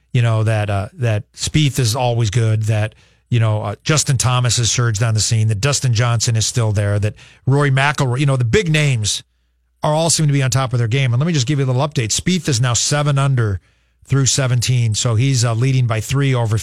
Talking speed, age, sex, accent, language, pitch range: 240 wpm, 40-59, male, American, English, 120-155 Hz